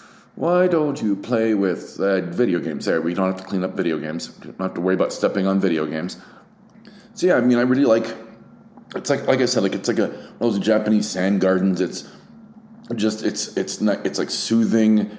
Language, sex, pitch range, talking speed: English, male, 90-125 Hz, 220 wpm